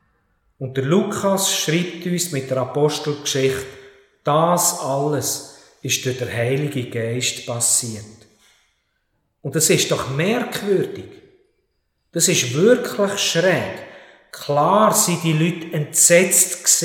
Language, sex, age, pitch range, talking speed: German, male, 50-69, 130-175 Hz, 105 wpm